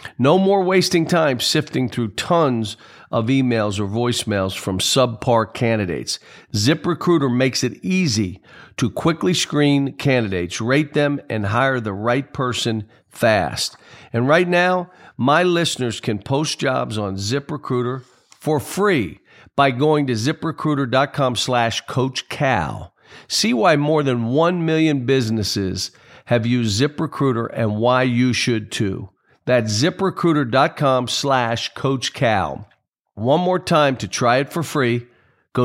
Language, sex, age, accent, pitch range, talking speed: English, male, 50-69, American, 115-150 Hz, 130 wpm